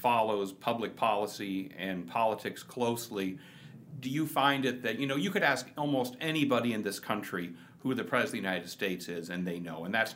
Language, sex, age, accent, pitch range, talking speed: English, male, 40-59, American, 110-145 Hz, 200 wpm